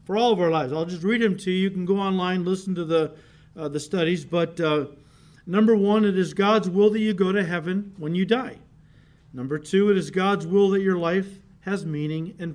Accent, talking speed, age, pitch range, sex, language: American, 235 wpm, 50-69, 160-200 Hz, male, English